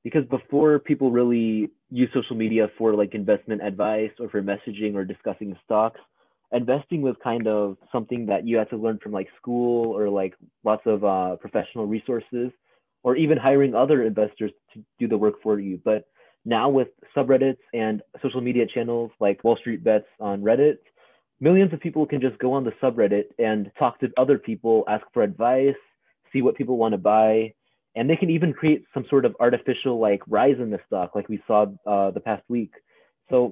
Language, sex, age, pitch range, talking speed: English, male, 30-49, 105-130 Hz, 190 wpm